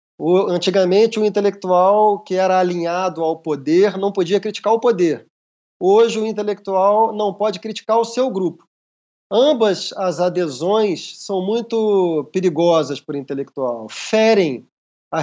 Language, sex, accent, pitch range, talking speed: Portuguese, male, Brazilian, 170-210 Hz, 130 wpm